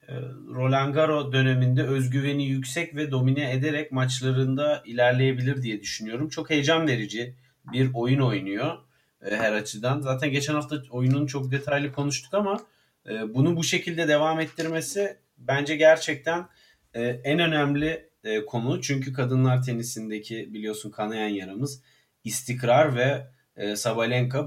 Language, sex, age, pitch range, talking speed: Turkish, male, 40-59, 120-150 Hz, 115 wpm